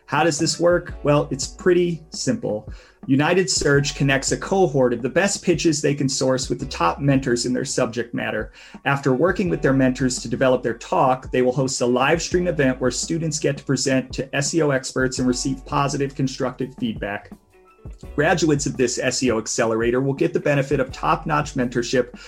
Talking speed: 185 wpm